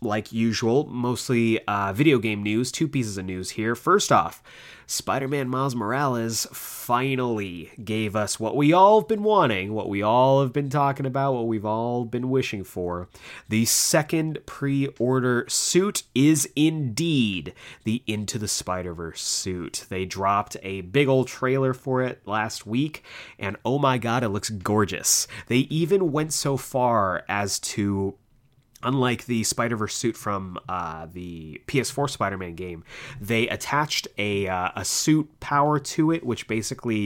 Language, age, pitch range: English, 30-49, 100-130 Hz